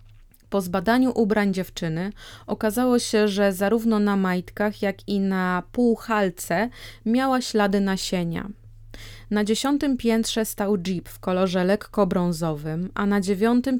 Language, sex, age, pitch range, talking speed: Polish, female, 30-49, 185-225 Hz, 125 wpm